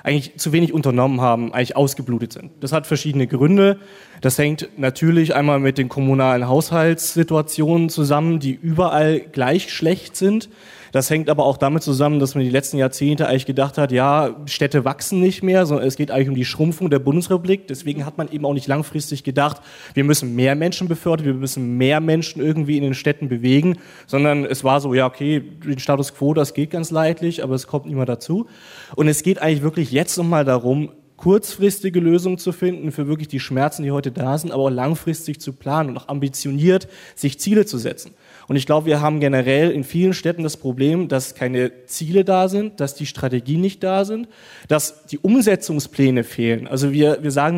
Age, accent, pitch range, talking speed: 30-49, German, 140-170 Hz, 200 wpm